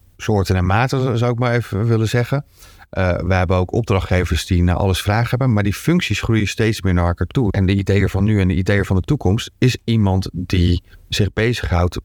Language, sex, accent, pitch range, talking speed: Dutch, male, Dutch, 95-115 Hz, 220 wpm